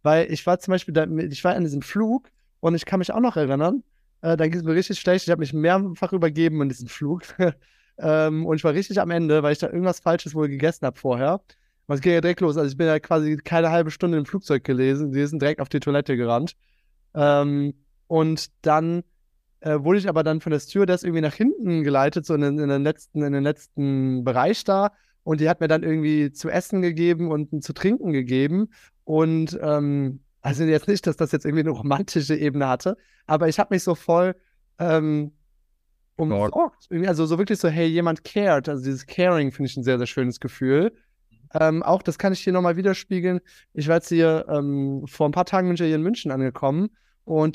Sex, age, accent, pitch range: male, 20-39, German, 145-180 Hz